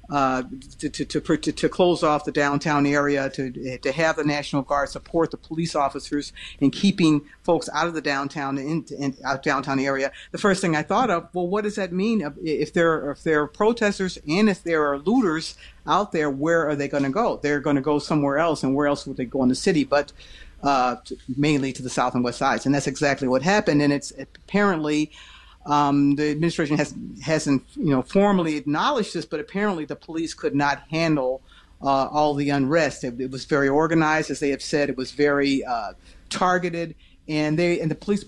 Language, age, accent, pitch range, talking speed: English, 50-69, American, 140-165 Hz, 210 wpm